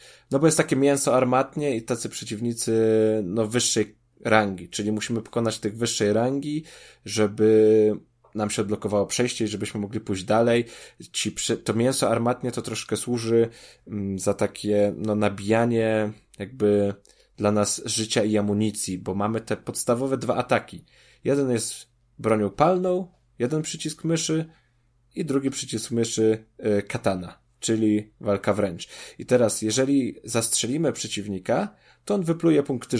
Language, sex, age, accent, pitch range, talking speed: Polish, male, 20-39, native, 105-125 Hz, 140 wpm